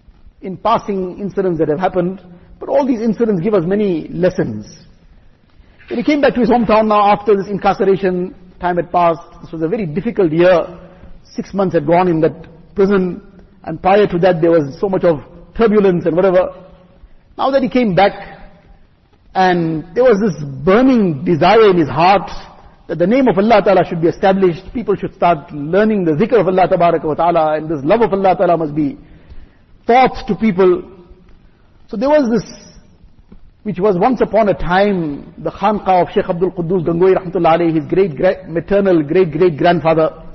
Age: 50-69